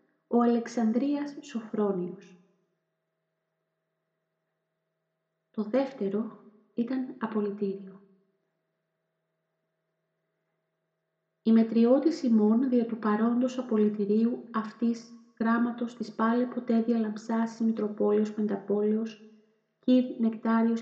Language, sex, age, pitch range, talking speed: Greek, female, 30-49, 210-250 Hz, 70 wpm